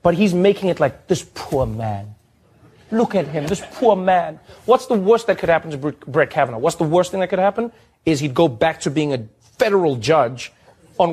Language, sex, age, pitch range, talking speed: English, male, 30-49, 140-195 Hz, 215 wpm